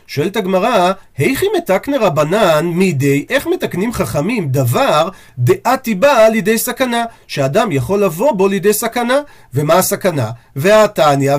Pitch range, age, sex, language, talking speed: 155-215 Hz, 40-59, male, Hebrew, 120 wpm